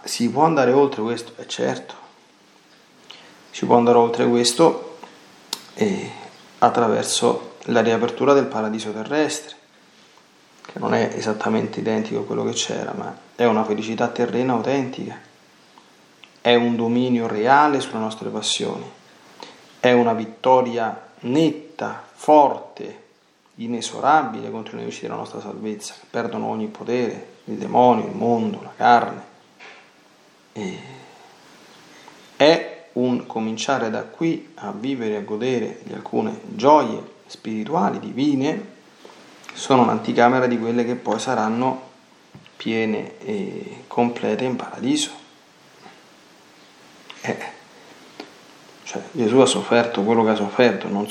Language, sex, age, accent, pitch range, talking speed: Italian, male, 30-49, native, 110-135 Hz, 120 wpm